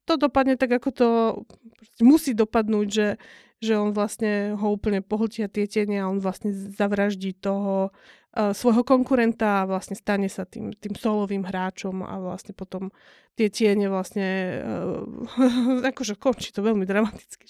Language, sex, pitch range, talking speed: Slovak, female, 205-245 Hz, 150 wpm